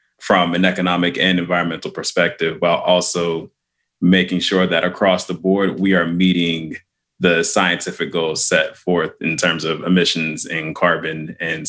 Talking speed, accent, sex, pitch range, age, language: 150 wpm, American, male, 85-100 Hz, 20-39, English